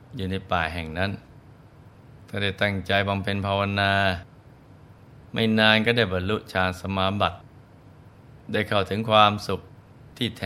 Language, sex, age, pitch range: Thai, male, 20-39, 95-115 Hz